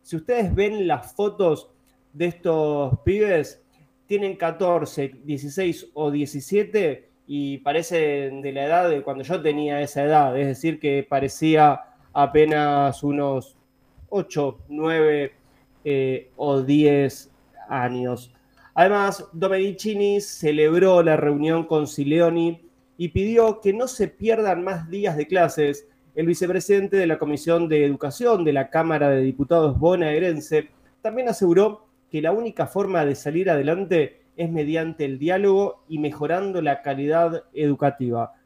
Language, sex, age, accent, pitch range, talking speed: Spanish, male, 20-39, Argentinian, 140-180 Hz, 130 wpm